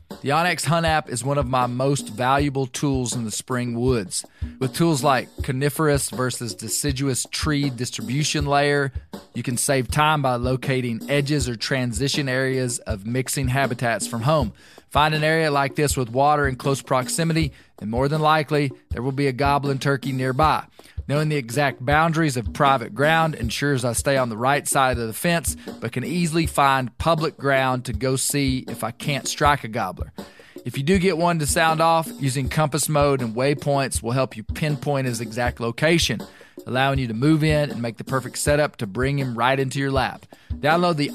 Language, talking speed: English, 190 wpm